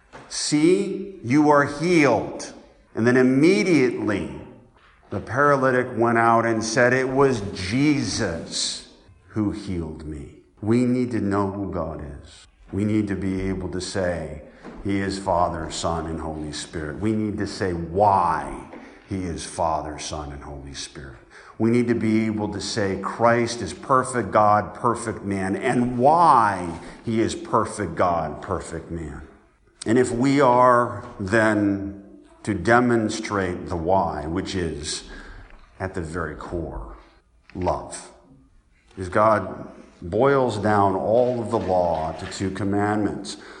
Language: English